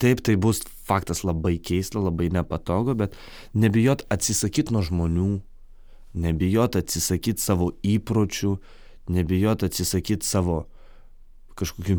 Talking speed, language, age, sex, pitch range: 105 wpm, English, 20-39, male, 85-110 Hz